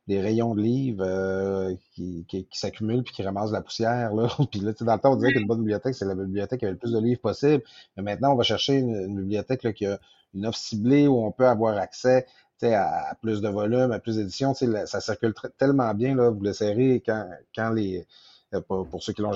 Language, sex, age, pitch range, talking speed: French, male, 30-49, 100-130 Hz, 250 wpm